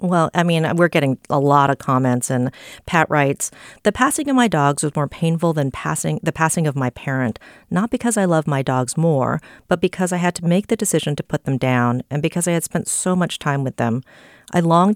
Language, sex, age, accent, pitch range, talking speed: English, female, 40-59, American, 135-170 Hz, 235 wpm